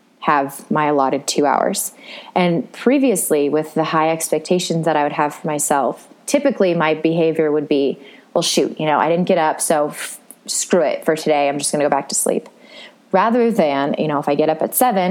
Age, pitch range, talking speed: 20-39, 160-230 Hz, 215 wpm